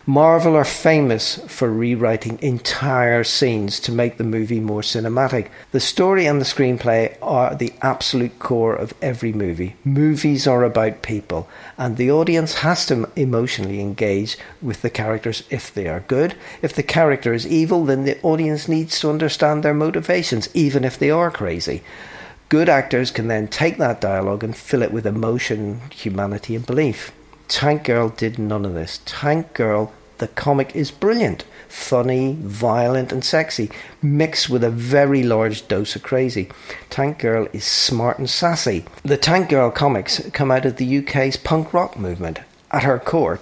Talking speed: 165 wpm